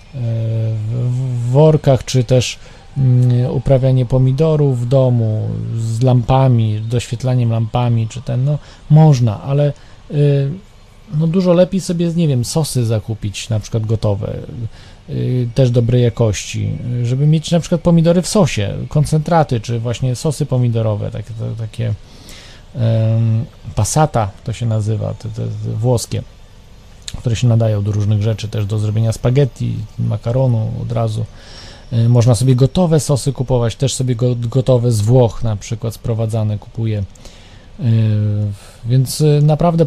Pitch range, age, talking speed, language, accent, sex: 110-135 Hz, 40-59, 125 wpm, Polish, native, male